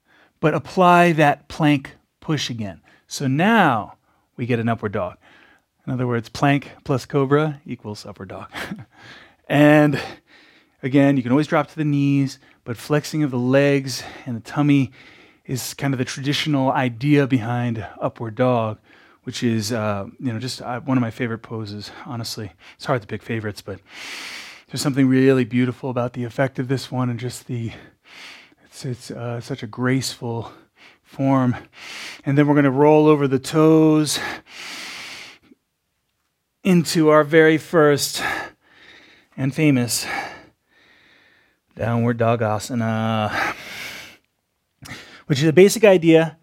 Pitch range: 120-145 Hz